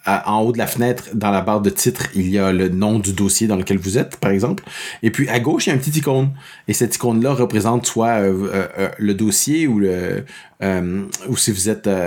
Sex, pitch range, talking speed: male, 100-130 Hz, 255 wpm